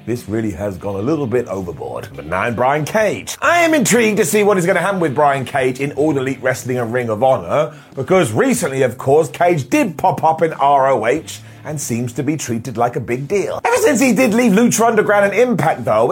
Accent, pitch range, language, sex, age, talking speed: British, 135-205 Hz, English, male, 30-49, 235 wpm